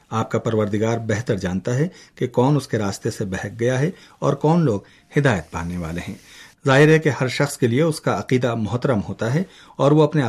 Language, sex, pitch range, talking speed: Urdu, male, 110-135 Hz, 220 wpm